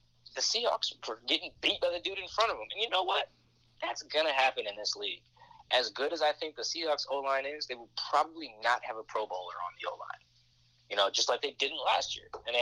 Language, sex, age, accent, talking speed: English, male, 20-39, American, 250 wpm